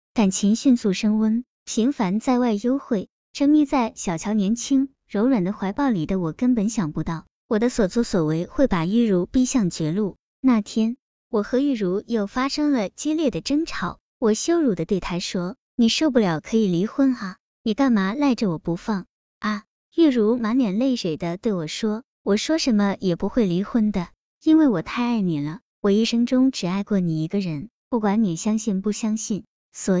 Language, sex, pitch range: Chinese, male, 190-250 Hz